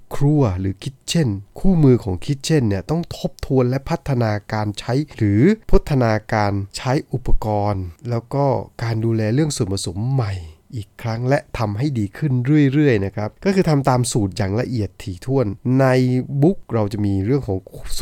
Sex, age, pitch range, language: male, 20-39, 100-135 Hz, Thai